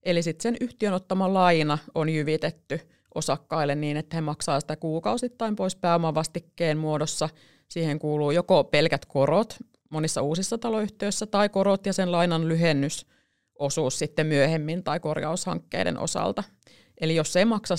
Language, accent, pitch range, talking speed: Finnish, native, 155-190 Hz, 140 wpm